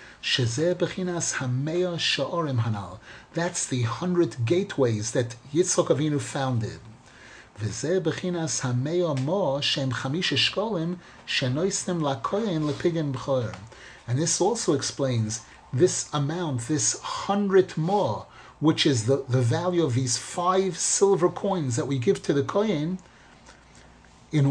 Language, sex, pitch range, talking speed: English, male, 130-185 Hz, 85 wpm